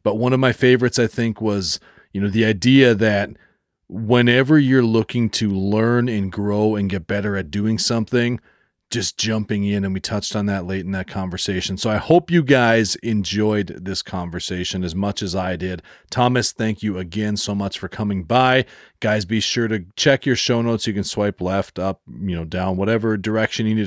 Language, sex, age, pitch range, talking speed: English, male, 40-59, 95-120 Hz, 200 wpm